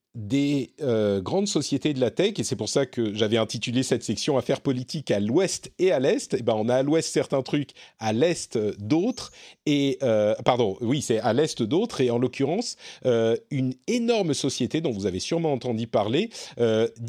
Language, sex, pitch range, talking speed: French, male, 115-165 Hz, 180 wpm